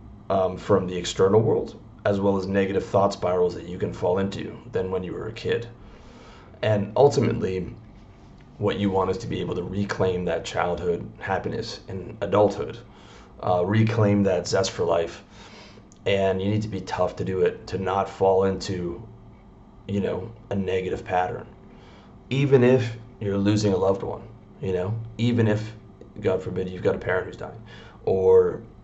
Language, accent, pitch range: English, American, 95-110 Hz